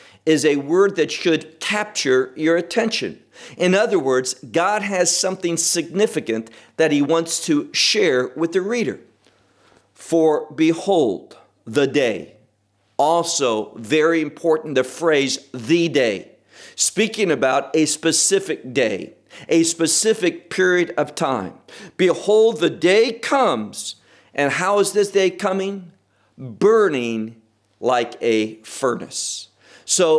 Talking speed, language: 115 wpm, English